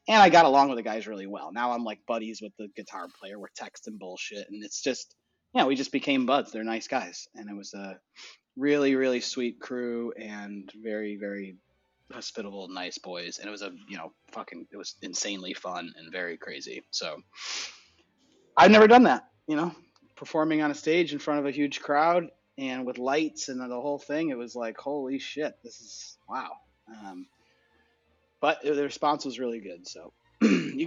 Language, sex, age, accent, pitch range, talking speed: English, male, 30-49, American, 105-145 Hz, 200 wpm